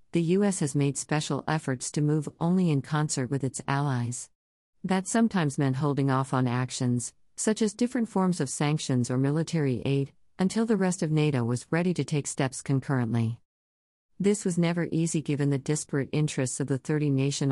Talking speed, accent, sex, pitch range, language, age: 180 wpm, American, female, 130-160 Hz, English, 50-69